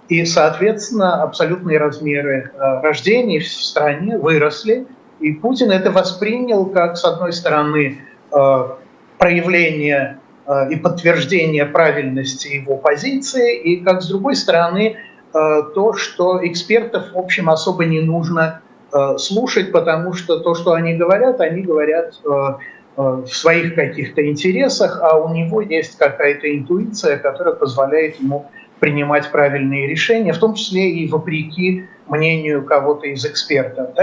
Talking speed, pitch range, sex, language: 120 wpm, 145-185 Hz, male, Russian